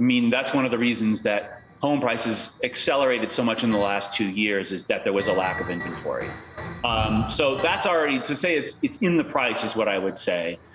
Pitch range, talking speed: 120-170 Hz, 235 wpm